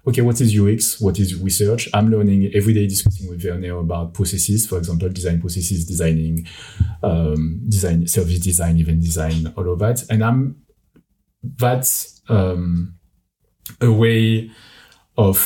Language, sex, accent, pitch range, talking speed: English, male, French, 85-110 Hz, 145 wpm